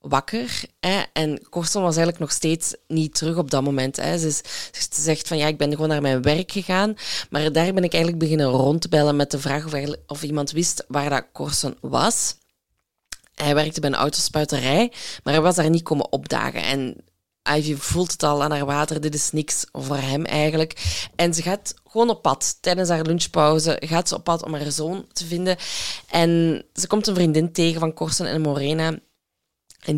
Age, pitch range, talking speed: 20-39, 150-175 Hz, 205 wpm